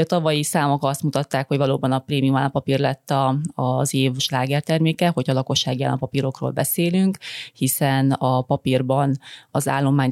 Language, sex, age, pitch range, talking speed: Hungarian, female, 30-49, 135-150 Hz, 150 wpm